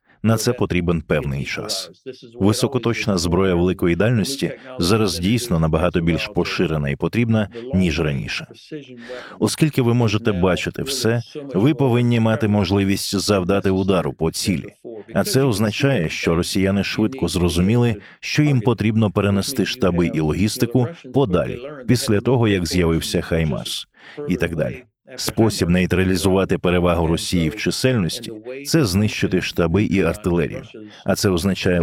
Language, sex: Ukrainian, male